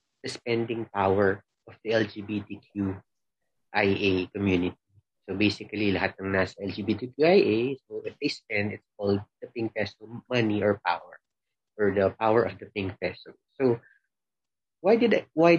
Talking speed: 130 wpm